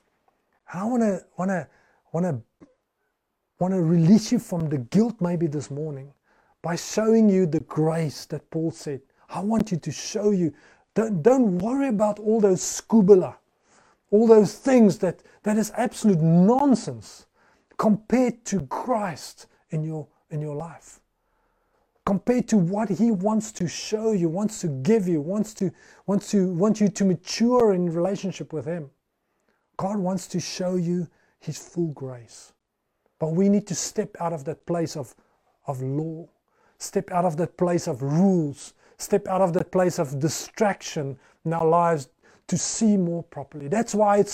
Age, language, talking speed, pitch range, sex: 30-49, English, 155 wpm, 165-210 Hz, male